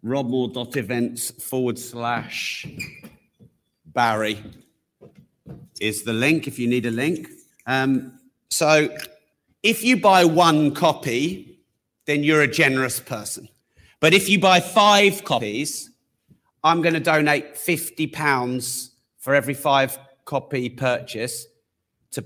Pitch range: 110-135 Hz